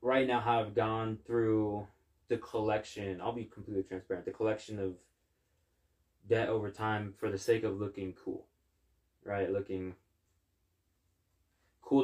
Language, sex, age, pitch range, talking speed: English, male, 20-39, 90-105 Hz, 130 wpm